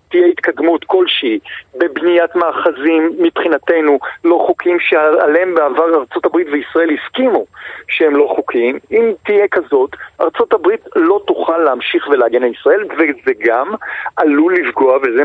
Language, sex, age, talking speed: Hebrew, male, 40-59, 120 wpm